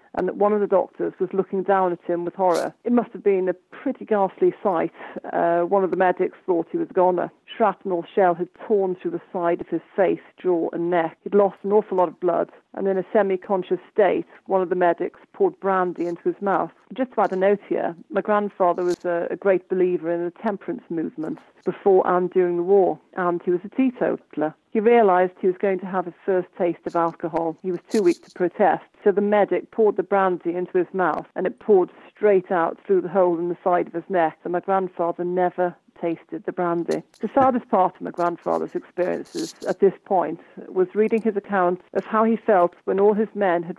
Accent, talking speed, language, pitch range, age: British, 225 wpm, English, 175-200 Hz, 40-59